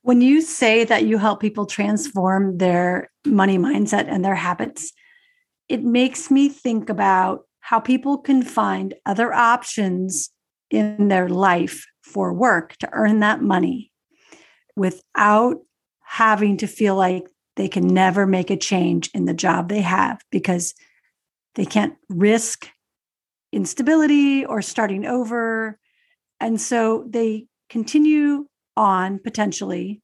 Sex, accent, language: female, American, English